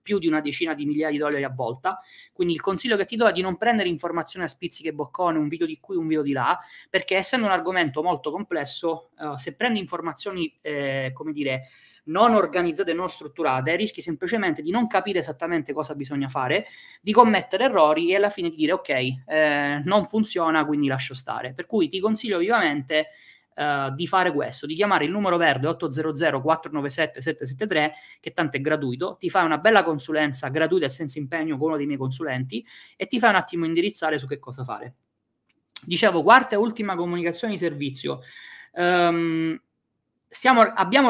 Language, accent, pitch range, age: Italian, native, 150-185 Hz, 20-39